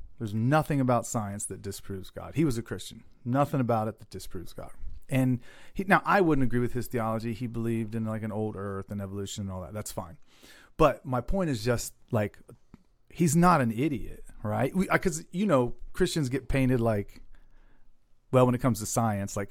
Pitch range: 110-145 Hz